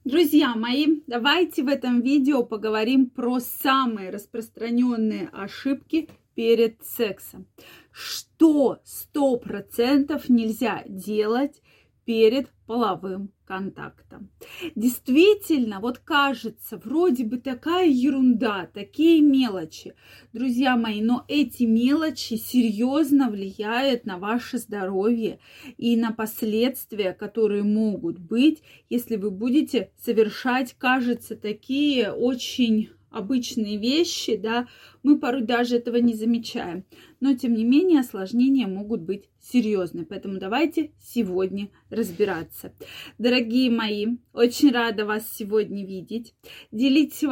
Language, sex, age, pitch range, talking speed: Russian, female, 30-49, 215-265 Hz, 105 wpm